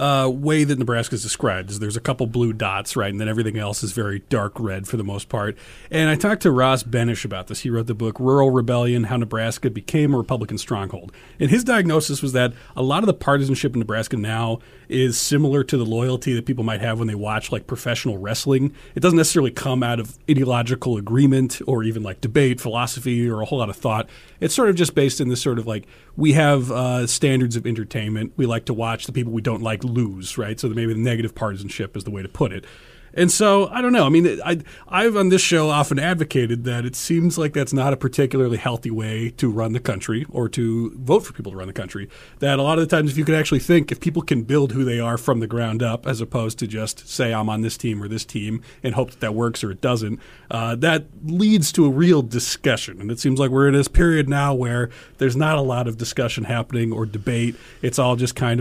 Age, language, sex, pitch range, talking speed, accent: 40-59, English, male, 115-140 Hz, 245 wpm, American